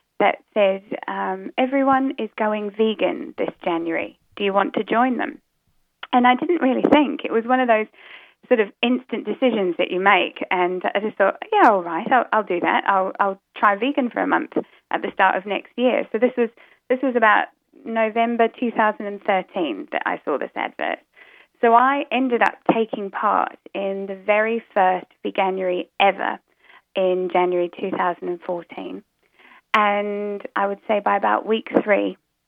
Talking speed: 170 wpm